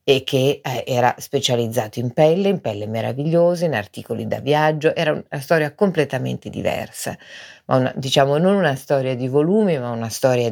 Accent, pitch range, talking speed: native, 125-160 Hz, 150 wpm